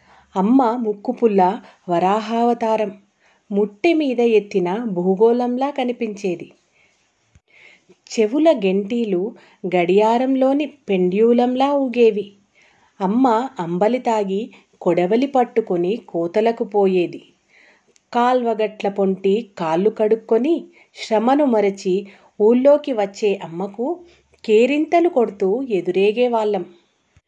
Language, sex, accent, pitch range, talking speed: Telugu, female, native, 195-245 Hz, 70 wpm